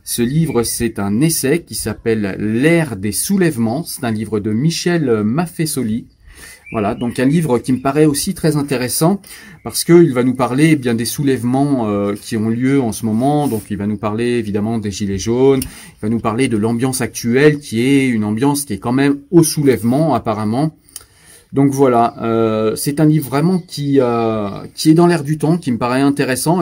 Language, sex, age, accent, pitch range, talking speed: French, male, 30-49, French, 115-150 Hz, 195 wpm